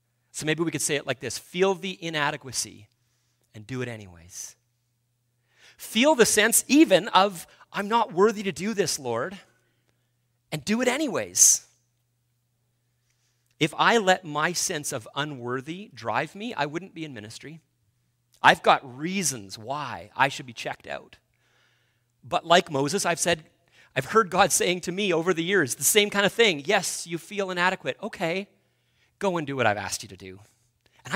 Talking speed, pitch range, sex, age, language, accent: 170 wpm, 120-165 Hz, male, 40-59, English, American